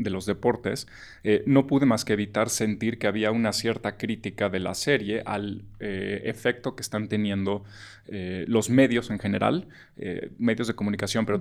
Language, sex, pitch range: Spanish, male, 105-120 Hz